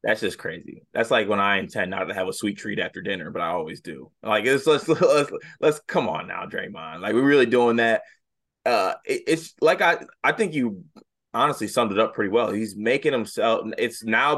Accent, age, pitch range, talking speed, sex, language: American, 20-39, 105-130 Hz, 225 wpm, male, English